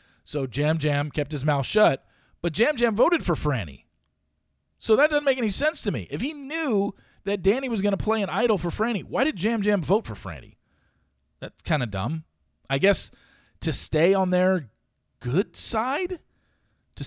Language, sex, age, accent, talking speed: English, male, 40-59, American, 190 wpm